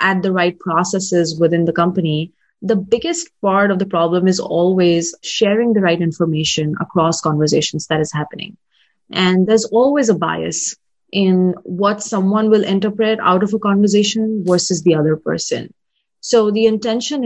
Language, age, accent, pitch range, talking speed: English, 30-49, Indian, 170-210 Hz, 155 wpm